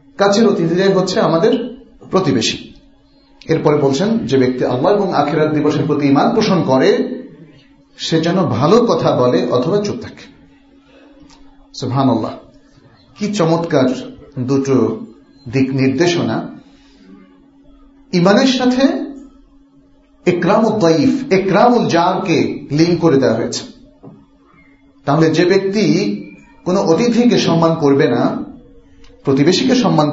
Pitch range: 140-225 Hz